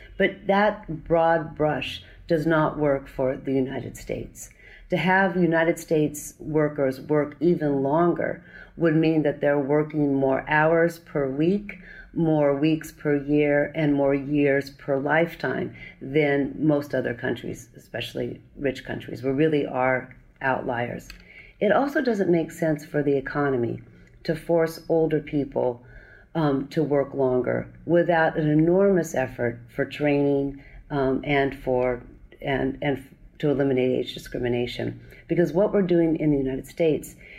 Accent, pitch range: American, 135-160 Hz